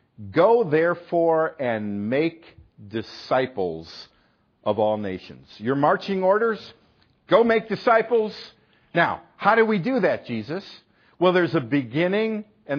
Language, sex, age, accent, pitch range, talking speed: English, male, 50-69, American, 115-175 Hz, 120 wpm